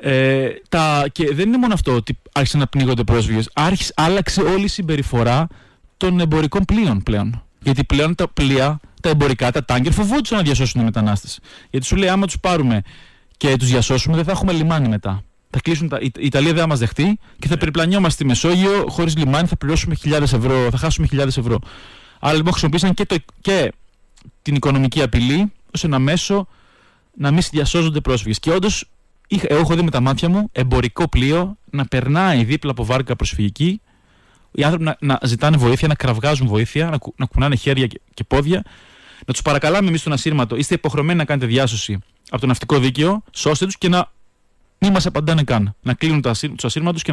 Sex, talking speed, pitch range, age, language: male, 190 wpm, 125-165 Hz, 30-49, Greek